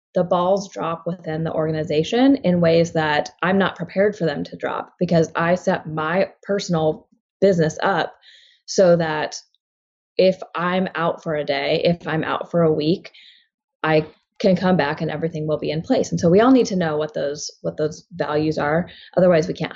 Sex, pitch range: female, 160-195 Hz